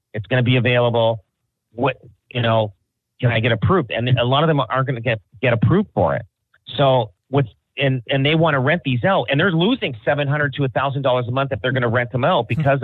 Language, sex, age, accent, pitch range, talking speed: English, male, 40-59, American, 110-140 Hz, 215 wpm